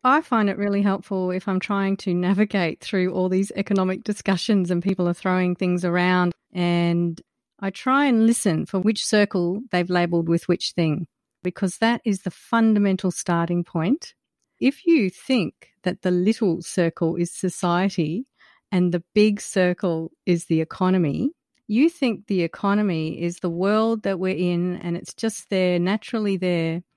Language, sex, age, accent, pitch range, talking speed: English, female, 40-59, Australian, 175-205 Hz, 160 wpm